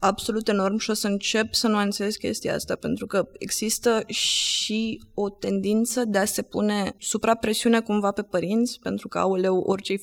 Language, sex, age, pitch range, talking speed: Romanian, female, 20-39, 180-220 Hz, 185 wpm